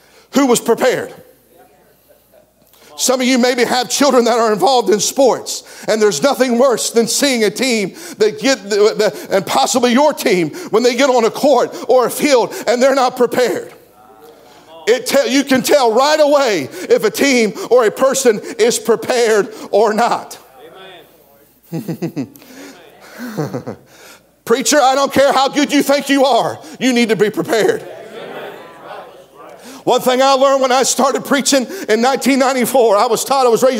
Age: 50-69